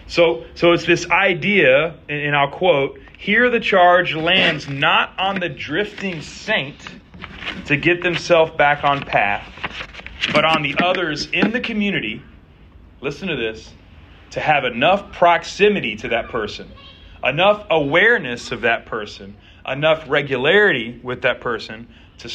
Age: 30-49